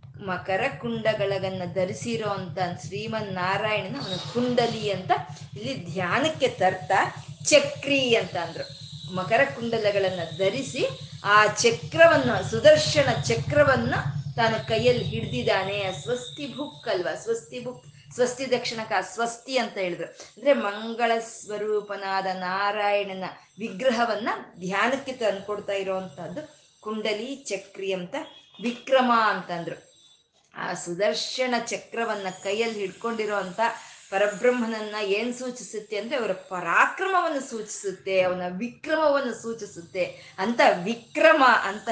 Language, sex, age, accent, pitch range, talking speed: Kannada, female, 20-39, native, 185-245 Hz, 95 wpm